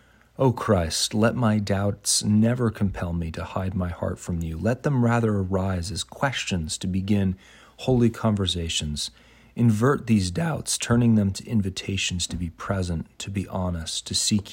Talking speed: 160 wpm